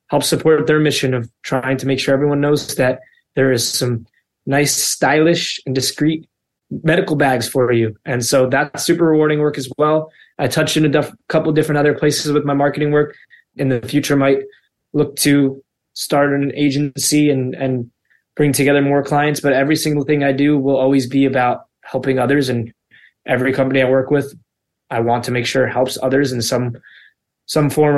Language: English